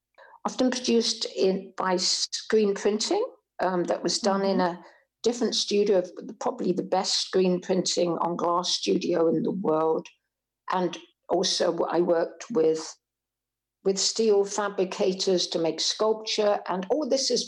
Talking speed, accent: 135 wpm, British